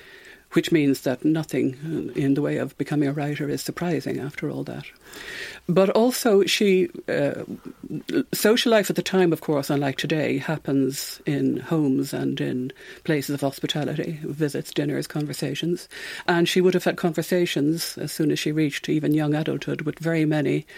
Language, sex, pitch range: English, female, 145-175 Hz